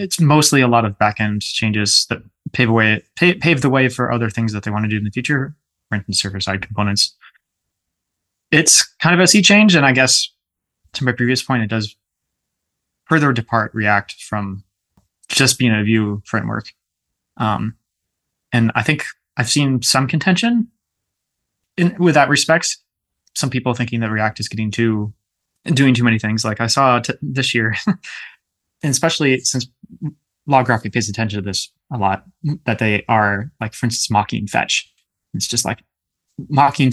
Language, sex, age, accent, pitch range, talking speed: English, male, 20-39, American, 105-140 Hz, 170 wpm